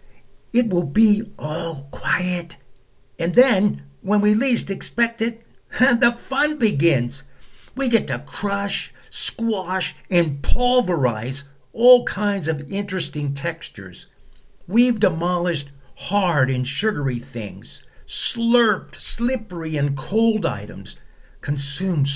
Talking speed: 105 wpm